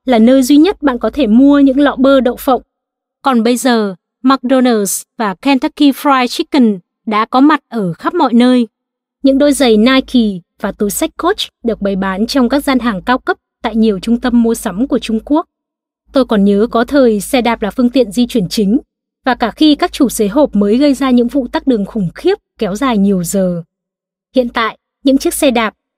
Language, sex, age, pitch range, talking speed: Vietnamese, female, 20-39, 220-270 Hz, 215 wpm